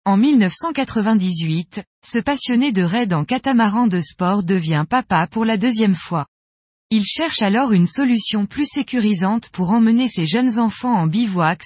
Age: 20-39